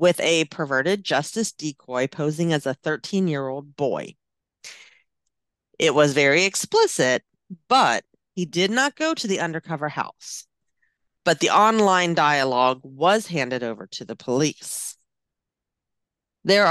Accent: American